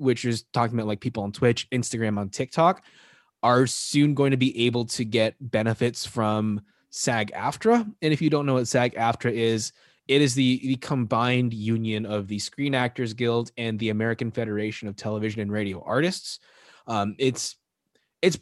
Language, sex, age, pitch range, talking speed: English, male, 20-39, 105-130 Hz, 175 wpm